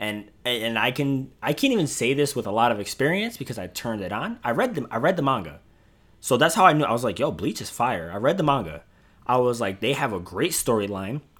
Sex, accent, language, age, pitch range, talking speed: male, American, English, 20-39, 105-150 Hz, 265 wpm